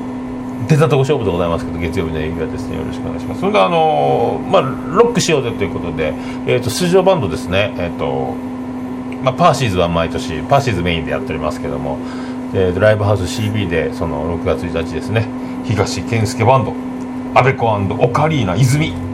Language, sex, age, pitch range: Japanese, male, 40-59, 100-130 Hz